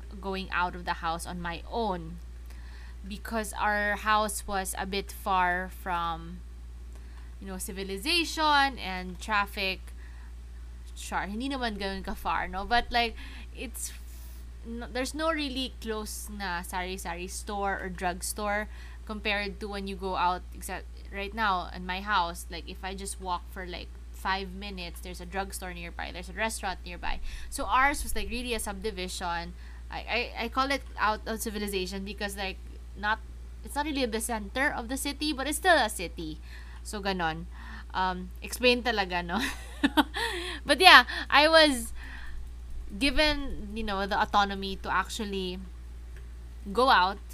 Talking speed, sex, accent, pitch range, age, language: 150 wpm, female, Filipino, 155-215 Hz, 20-39, English